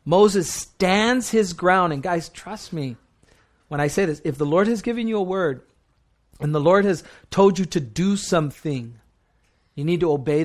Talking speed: 190 wpm